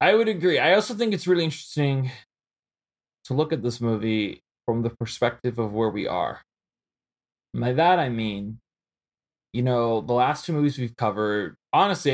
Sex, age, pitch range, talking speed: male, 20-39, 120-160 Hz, 170 wpm